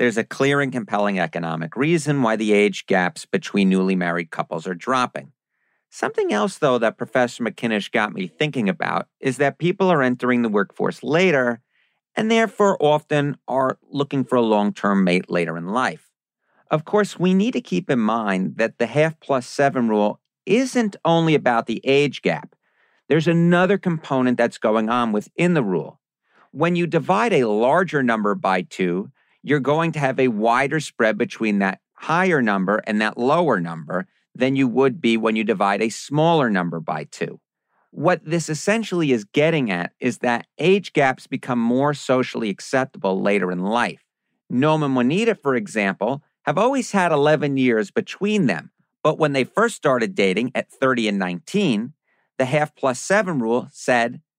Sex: male